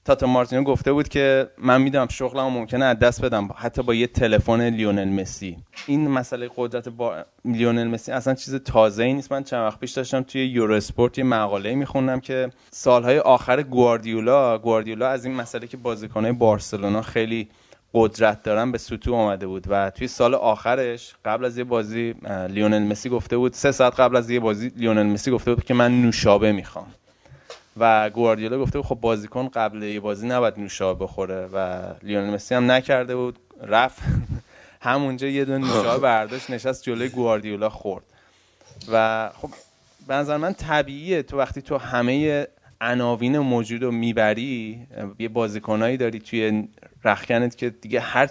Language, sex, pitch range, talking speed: Persian, male, 110-130 Hz, 160 wpm